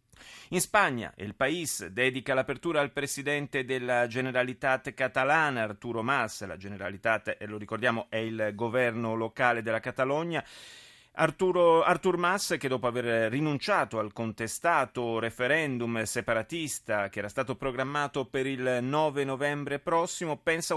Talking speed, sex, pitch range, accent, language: 125 wpm, male, 110-145 Hz, native, Italian